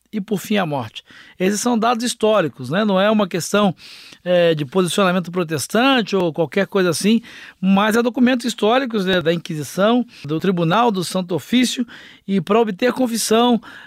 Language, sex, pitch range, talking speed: Portuguese, male, 180-220 Hz, 160 wpm